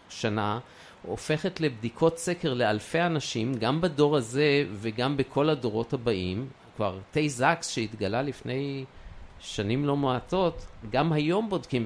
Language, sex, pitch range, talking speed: Hebrew, male, 105-140 Hz, 120 wpm